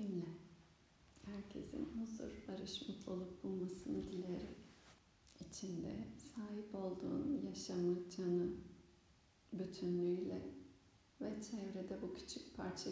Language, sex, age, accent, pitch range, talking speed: Turkish, female, 40-59, native, 145-190 Hz, 85 wpm